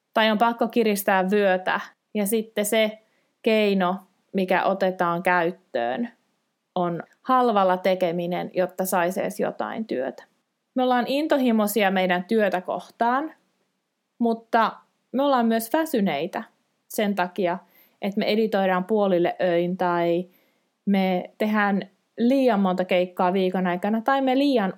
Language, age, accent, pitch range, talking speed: Finnish, 20-39, native, 185-230 Hz, 120 wpm